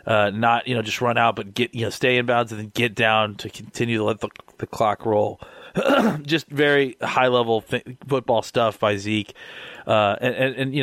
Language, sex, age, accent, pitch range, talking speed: English, male, 30-49, American, 110-135 Hz, 220 wpm